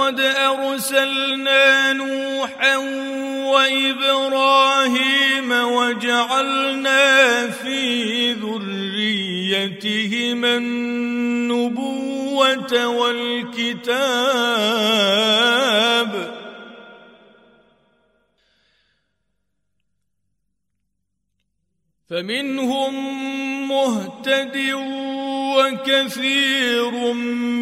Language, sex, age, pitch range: Arabic, male, 50-69, 215-270 Hz